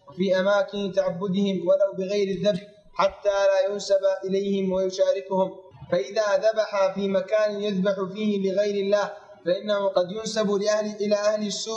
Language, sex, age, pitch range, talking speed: Arabic, male, 20-39, 195-215 Hz, 135 wpm